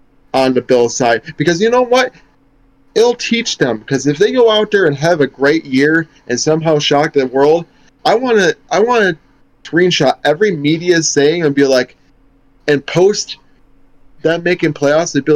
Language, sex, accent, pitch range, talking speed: English, male, American, 130-160 Hz, 185 wpm